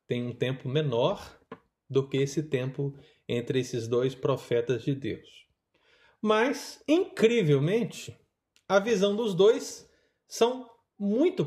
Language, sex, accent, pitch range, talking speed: Portuguese, male, Brazilian, 145-225 Hz, 115 wpm